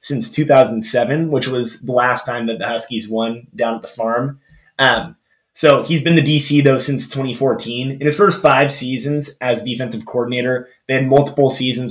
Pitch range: 115-145 Hz